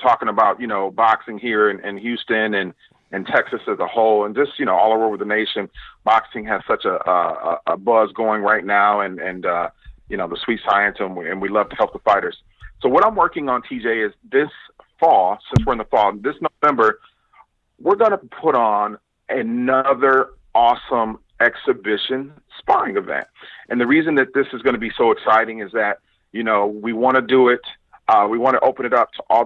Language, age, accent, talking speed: English, 40-59, American, 215 wpm